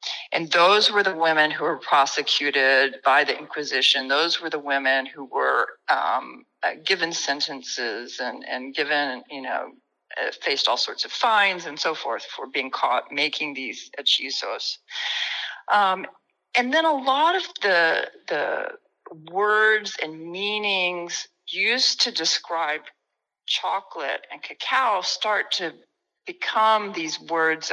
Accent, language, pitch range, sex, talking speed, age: American, English, 155-210 Hz, female, 135 wpm, 50-69